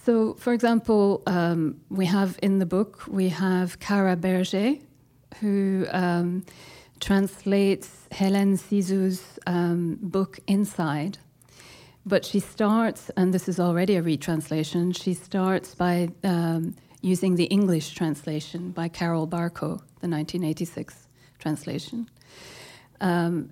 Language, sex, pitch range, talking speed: English, female, 165-195 Hz, 115 wpm